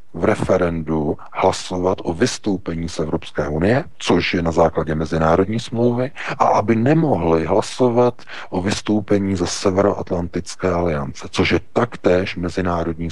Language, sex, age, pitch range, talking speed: Czech, male, 40-59, 85-110 Hz, 125 wpm